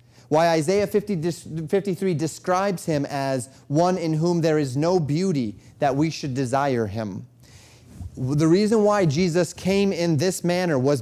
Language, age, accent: English, 30-49, American